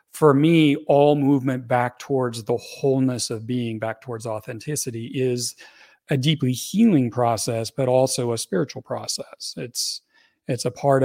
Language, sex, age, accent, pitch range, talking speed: English, male, 40-59, American, 115-145 Hz, 145 wpm